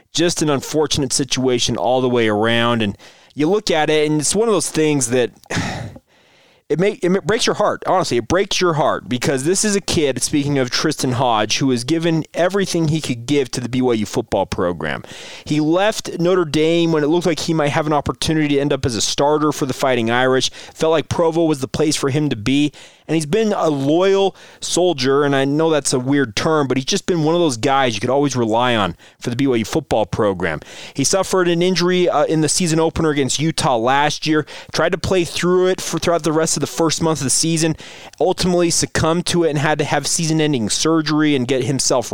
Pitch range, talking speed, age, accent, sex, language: 130-165 Hz, 225 wpm, 30-49, American, male, English